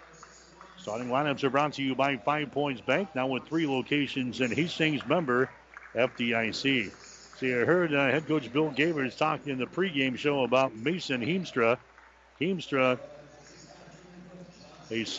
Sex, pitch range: male, 130-155 Hz